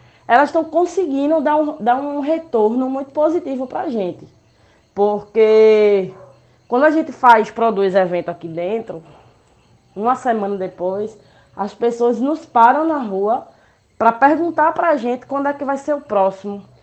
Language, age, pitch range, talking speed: Portuguese, 20-39, 195-250 Hz, 155 wpm